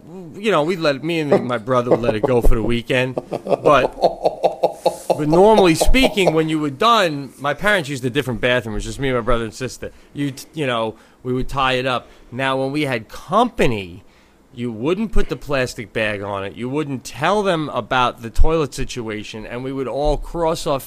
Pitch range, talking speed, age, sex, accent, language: 125-155 Hz, 210 wpm, 30-49, male, American, English